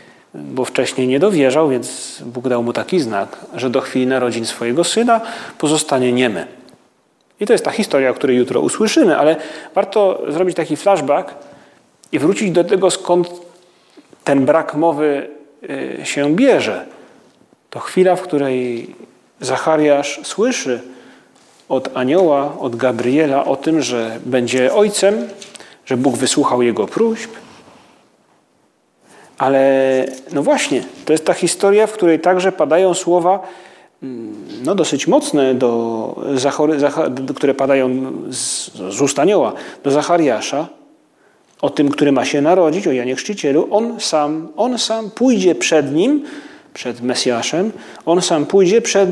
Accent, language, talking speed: native, Polish, 125 wpm